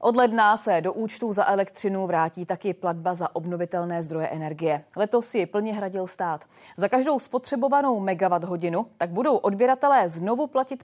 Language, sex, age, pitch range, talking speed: Czech, female, 30-49, 175-235 Hz, 160 wpm